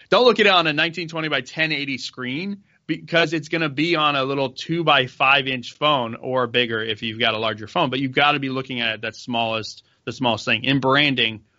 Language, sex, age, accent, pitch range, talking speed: English, male, 20-39, American, 120-145 Hz, 235 wpm